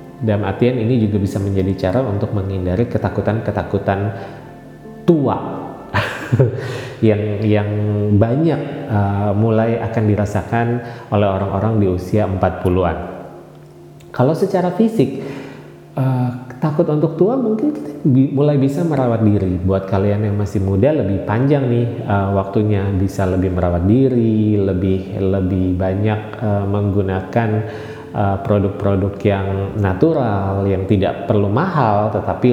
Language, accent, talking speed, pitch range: Indonesian, native, 115 wpm, 100-125 Hz